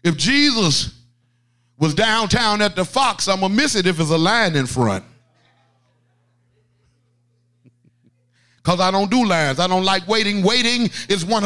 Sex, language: male, English